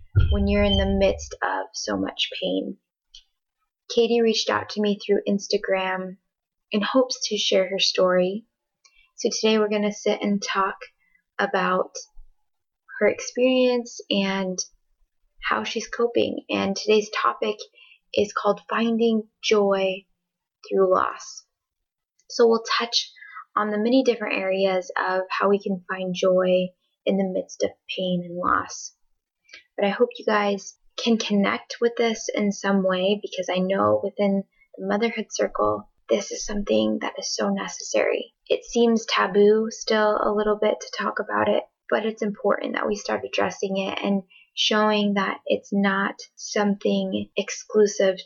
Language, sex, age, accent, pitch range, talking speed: English, female, 10-29, American, 190-230 Hz, 150 wpm